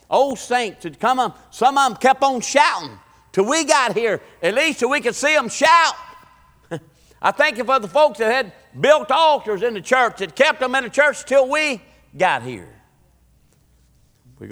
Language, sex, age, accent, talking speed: English, male, 50-69, American, 195 wpm